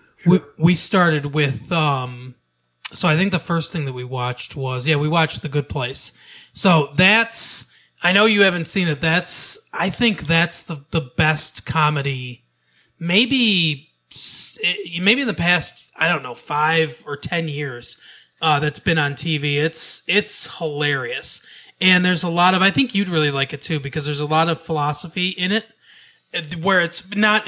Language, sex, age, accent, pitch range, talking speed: English, male, 30-49, American, 145-185 Hz, 175 wpm